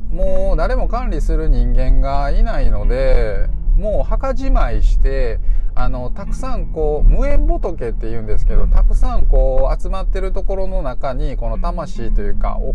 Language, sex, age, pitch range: Japanese, male, 20-39, 105-165 Hz